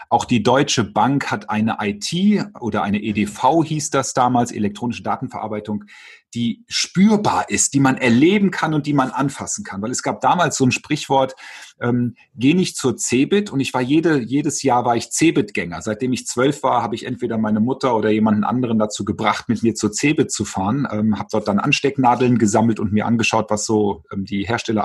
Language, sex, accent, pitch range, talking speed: German, male, German, 110-140 Hz, 200 wpm